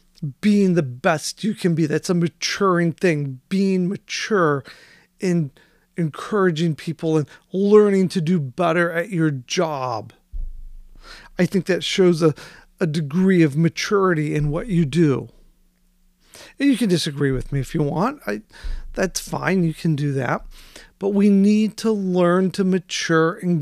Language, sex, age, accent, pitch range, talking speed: English, male, 40-59, American, 150-190 Hz, 150 wpm